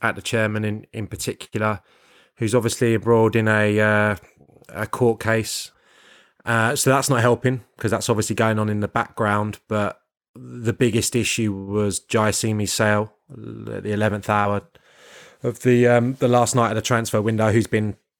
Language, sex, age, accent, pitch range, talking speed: English, male, 20-39, British, 105-120 Hz, 170 wpm